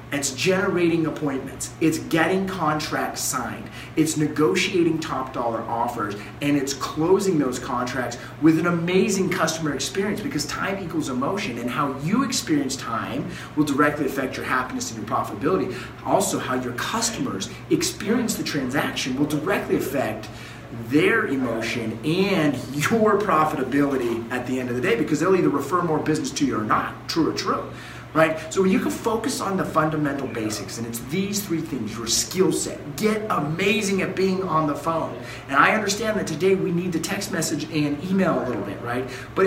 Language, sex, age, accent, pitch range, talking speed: English, male, 30-49, American, 135-185 Hz, 175 wpm